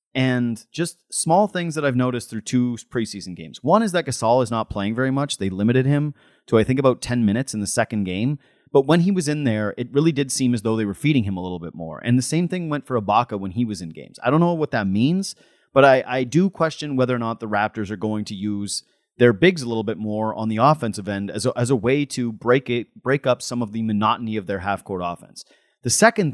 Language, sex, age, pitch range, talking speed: English, male, 30-49, 110-150 Hz, 260 wpm